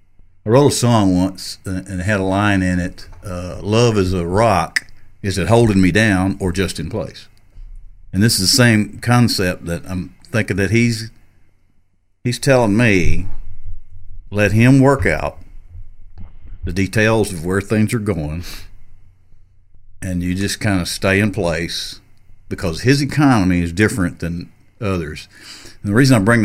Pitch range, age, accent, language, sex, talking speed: 90-105 Hz, 50-69, American, English, male, 160 wpm